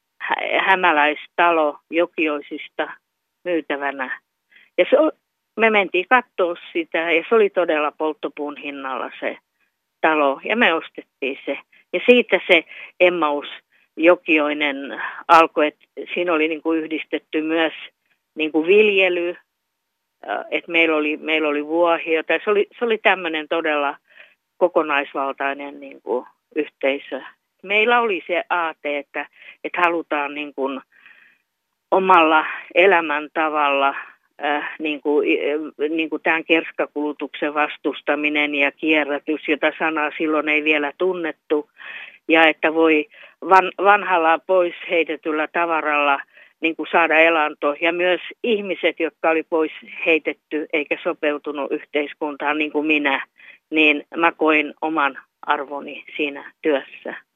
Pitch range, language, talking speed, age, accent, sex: 150-170 Hz, Finnish, 120 wpm, 50-69, native, female